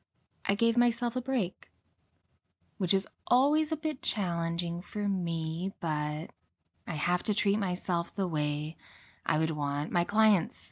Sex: female